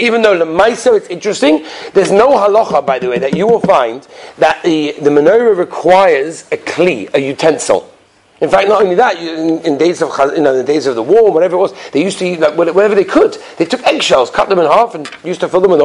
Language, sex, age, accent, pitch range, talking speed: English, male, 40-59, British, 175-285 Hz, 250 wpm